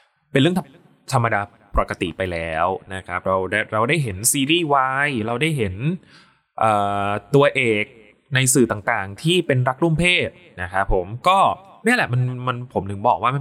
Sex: male